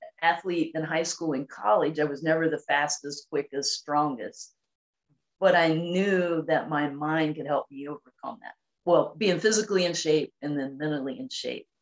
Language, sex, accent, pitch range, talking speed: English, female, American, 145-180 Hz, 175 wpm